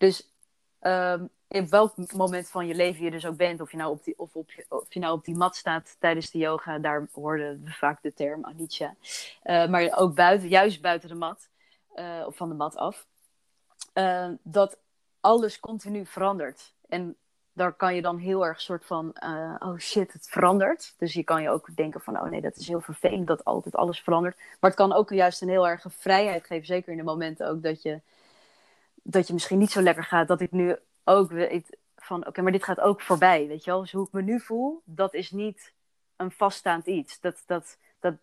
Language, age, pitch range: Dutch, 30-49, 165-190 Hz